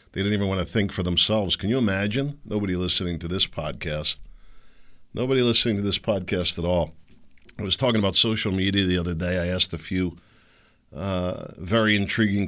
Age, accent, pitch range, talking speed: 40-59, American, 85-110 Hz, 190 wpm